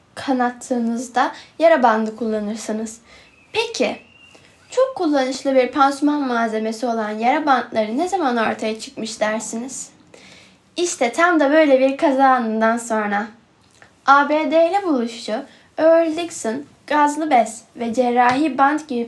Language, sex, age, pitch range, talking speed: Turkish, female, 10-29, 230-300 Hz, 110 wpm